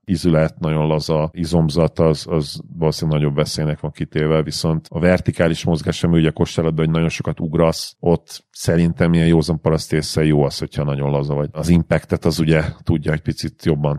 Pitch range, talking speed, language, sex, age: 80-90 Hz, 165 wpm, Hungarian, male, 40-59